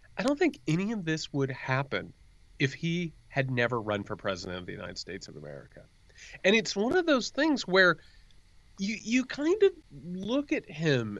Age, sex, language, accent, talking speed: 30-49, male, English, American, 190 wpm